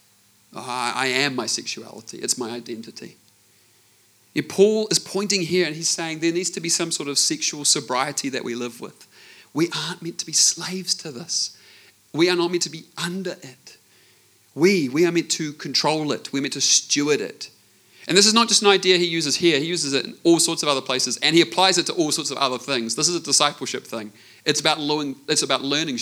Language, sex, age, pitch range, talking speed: English, male, 30-49, 130-180 Hz, 215 wpm